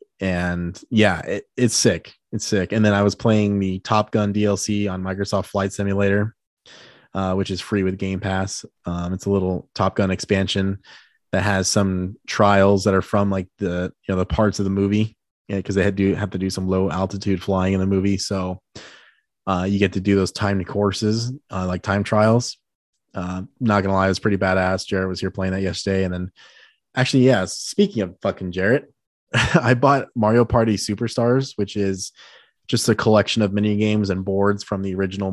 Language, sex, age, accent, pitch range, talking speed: English, male, 20-39, American, 95-105 Hz, 200 wpm